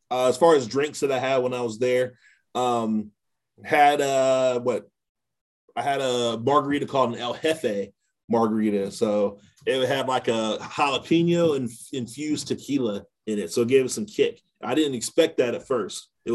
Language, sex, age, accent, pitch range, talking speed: English, male, 30-49, American, 110-135 Hz, 180 wpm